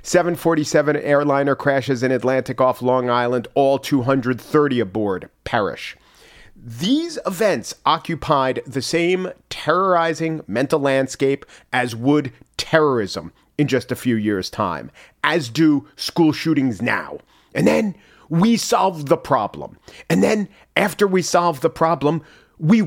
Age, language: 40-59, English